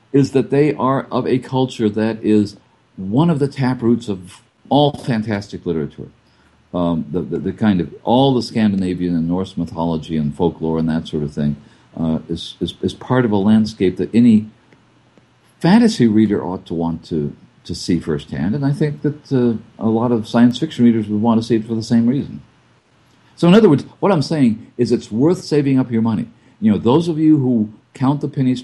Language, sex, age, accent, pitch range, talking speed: English, male, 50-69, American, 105-135 Hz, 205 wpm